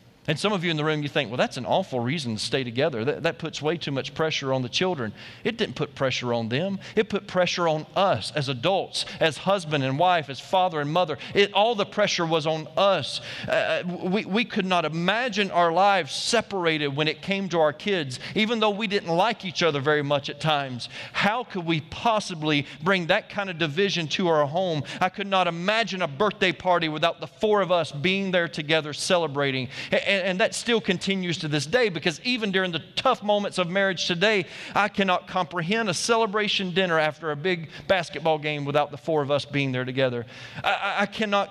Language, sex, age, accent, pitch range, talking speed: English, male, 40-59, American, 155-200 Hz, 210 wpm